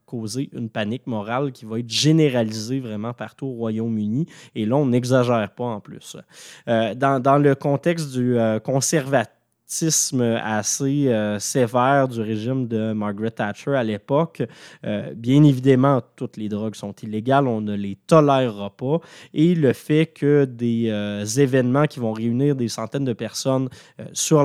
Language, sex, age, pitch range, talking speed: French, male, 20-39, 115-145 Hz, 160 wpm